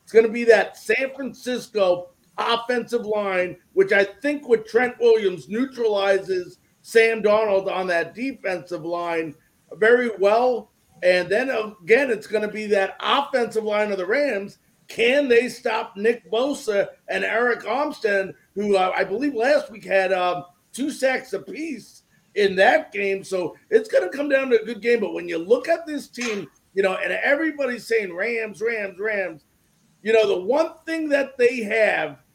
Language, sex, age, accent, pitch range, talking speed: English, male, 50-69, American, 200-270 Hz, 170 wpm